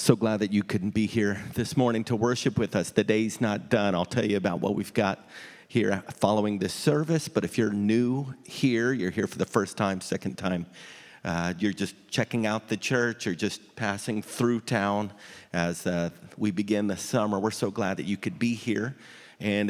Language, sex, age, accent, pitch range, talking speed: English, male, 40-59, American, 95-115 Hz, 205 wpm